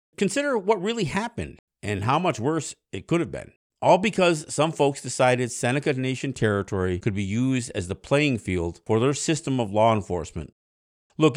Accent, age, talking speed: American, 50-69, 180 wpm